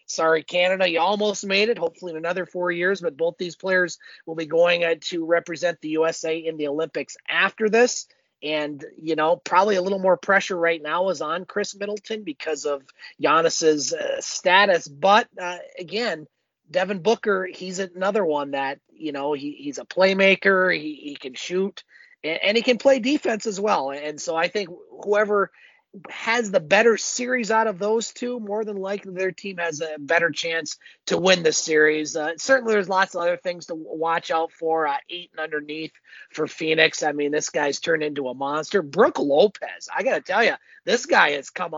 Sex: male